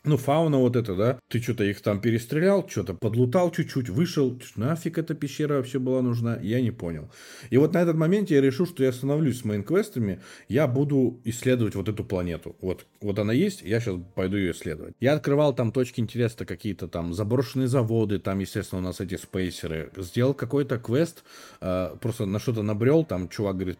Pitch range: 100-140 Hz